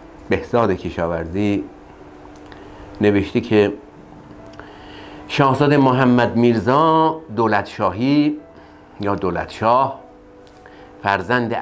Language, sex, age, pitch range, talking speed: Persian, male, 60-79, 85-125 Hz, 55 wpm